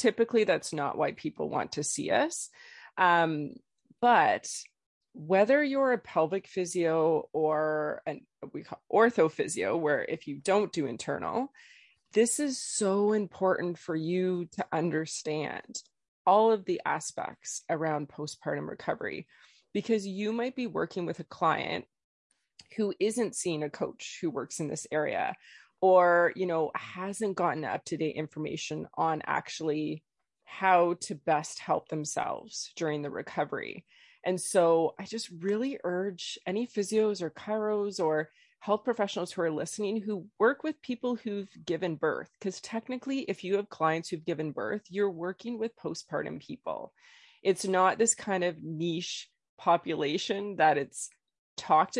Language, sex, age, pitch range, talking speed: English, female, 20-39, 165-225 Hz, 140 wpm